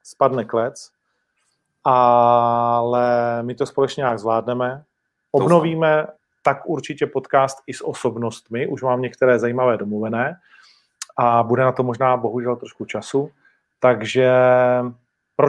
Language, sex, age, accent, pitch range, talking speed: Czech, male, 40-59, native, 120-155 Hz, 115 wpm